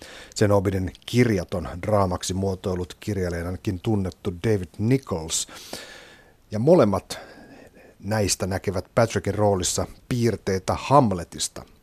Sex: male